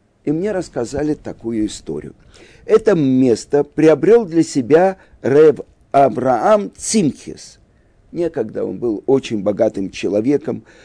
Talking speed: 105 wpm